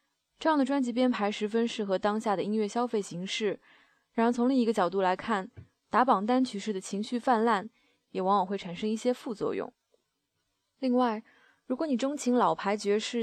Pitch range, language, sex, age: 200-245 Hz, Chinese, female, 20-39